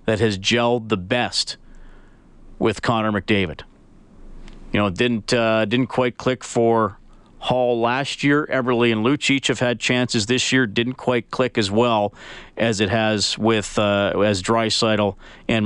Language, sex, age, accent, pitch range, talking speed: English, male, 40-59, American, 110-145 Hz, 155 wpm